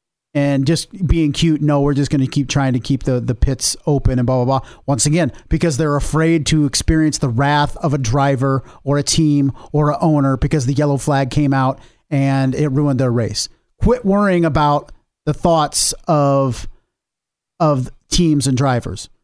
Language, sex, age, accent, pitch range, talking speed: English, male, 40-59, American, 140-170 Hz, 185 wpm